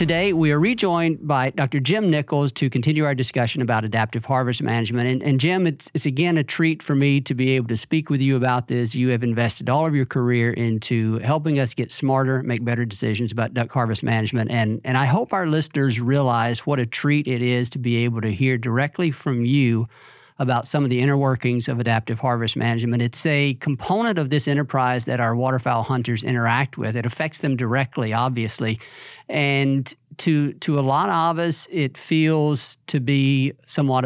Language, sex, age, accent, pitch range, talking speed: English, male, 50-69, American, 120-150 Hz, 200 wpm